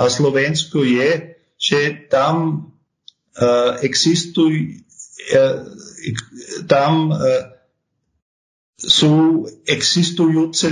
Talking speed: 65 wpm